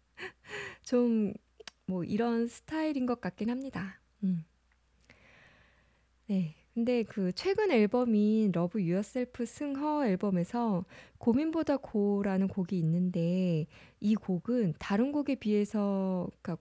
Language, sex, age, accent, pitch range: Korean, female, 20-39, native, 185-255 Hz